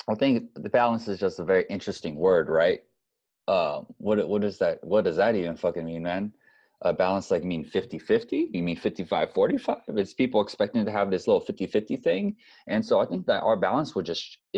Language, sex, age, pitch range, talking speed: English, male, 20-39, 90-120 Hz, 220 wpm